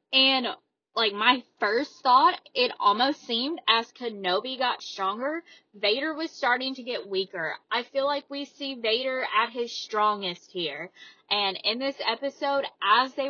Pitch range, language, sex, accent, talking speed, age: 235-310 Hz, English, female, American, 155 wpm, 20-39